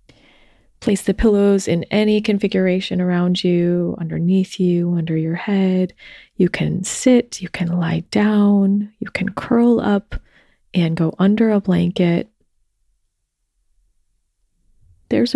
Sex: female